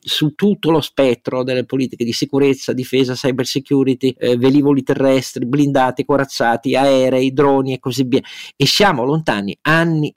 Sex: male